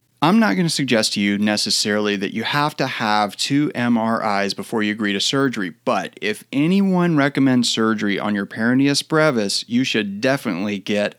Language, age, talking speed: English, 30-49, 175 wpm